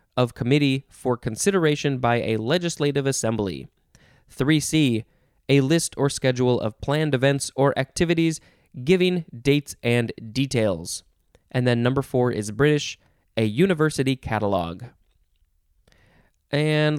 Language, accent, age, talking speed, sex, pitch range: English, American, 20-39, 115 wpm, male, 115-145 Hz